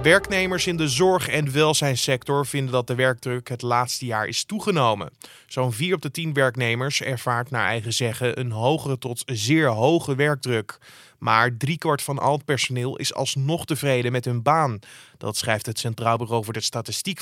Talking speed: 180 wpm